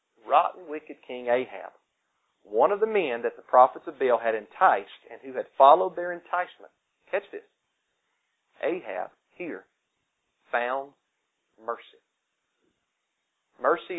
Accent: American